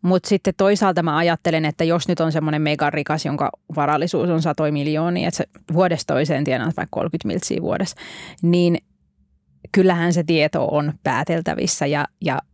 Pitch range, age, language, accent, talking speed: 155-175 Hz, 20-39, Finnish, native, 165 wpm